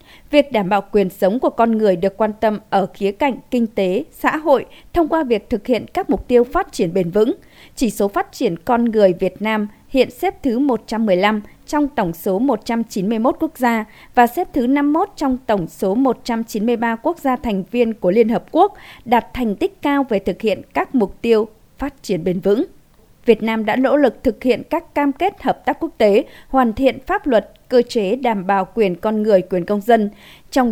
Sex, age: female, 20-39